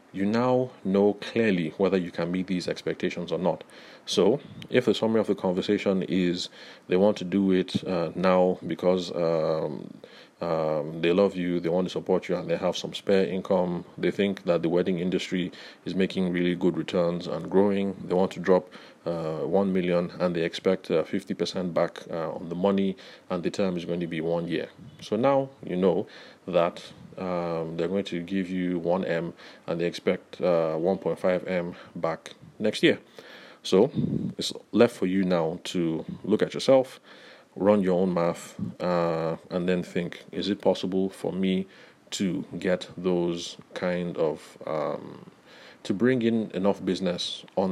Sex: male